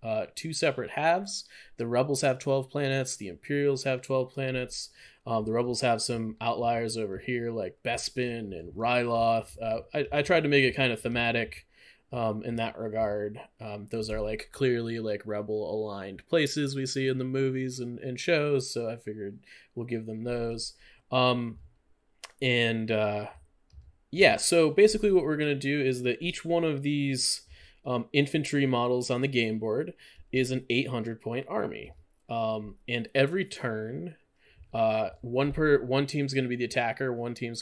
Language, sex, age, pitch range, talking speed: English, male, 20-39, 115-135 Hz, 170 wpm